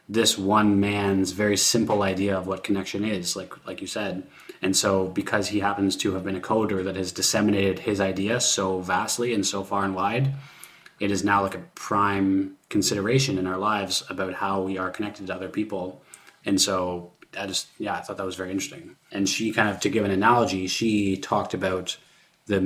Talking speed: 205 wpm